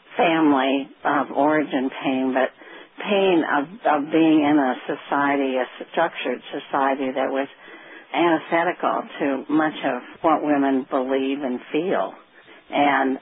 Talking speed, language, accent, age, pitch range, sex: 125 wpm, English, American, 60-79, 140-155 Hz, female